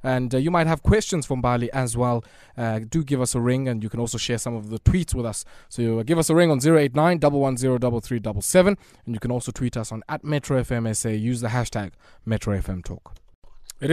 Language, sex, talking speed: English, male, 215 wpm